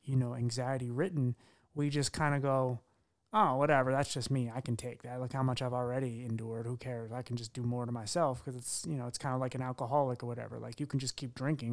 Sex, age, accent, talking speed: male, 30-49, American, 260 wpm